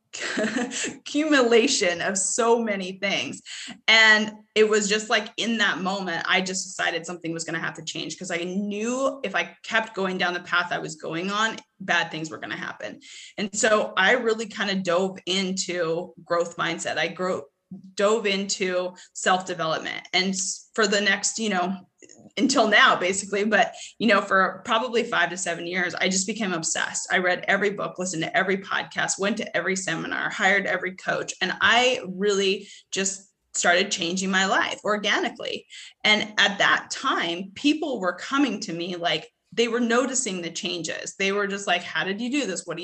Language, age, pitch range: English, 20-39, 180-225 Hz